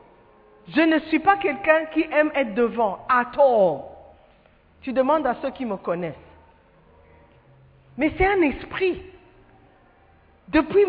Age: 50-69